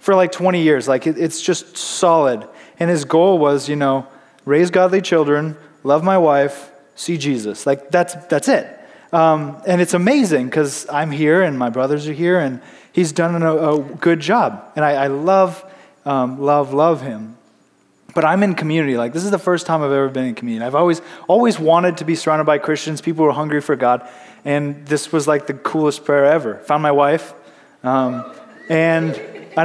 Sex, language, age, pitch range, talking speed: male, English, 20-39, 145-185 Hz, 195 wpm